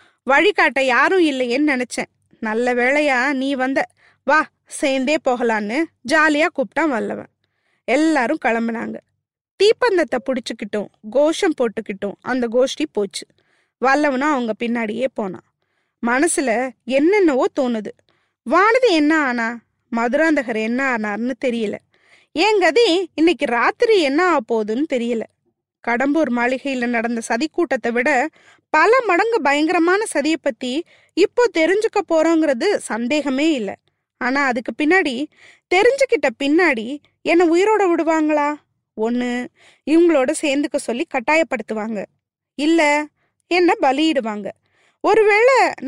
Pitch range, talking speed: 250-345 Hz, 100 wpm